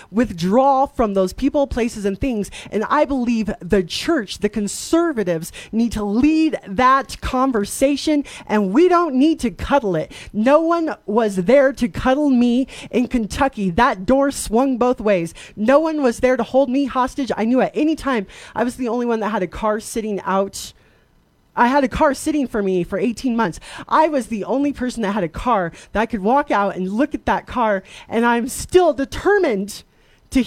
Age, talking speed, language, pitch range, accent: 30-49, 195 wpm, English, 205-265 Hz, American